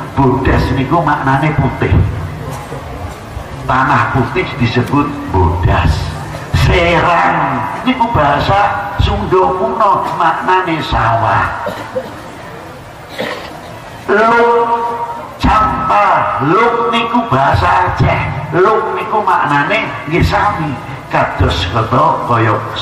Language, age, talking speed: Indonesian, 60-79, 70 wpm